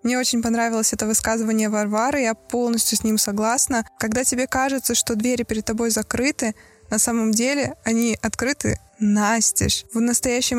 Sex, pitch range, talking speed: female, 225-255 Hz, 155 wpm